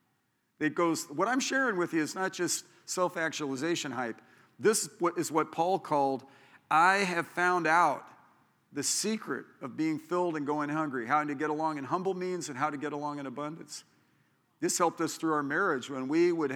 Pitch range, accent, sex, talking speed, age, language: 150-205 Hz, American, male, 190 wpm, 50-69, English